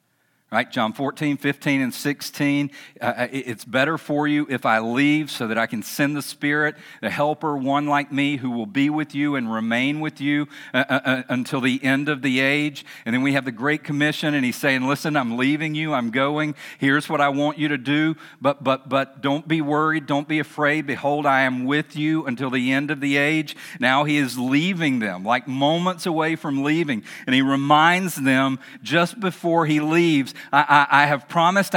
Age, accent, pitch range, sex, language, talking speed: 50-69, American, 130-155 Hz, male, English, 205 wpm